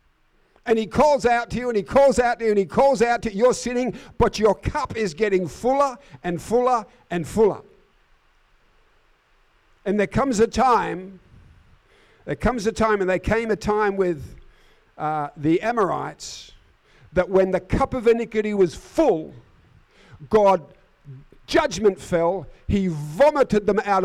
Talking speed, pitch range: 155 wpm, 165-220 Hz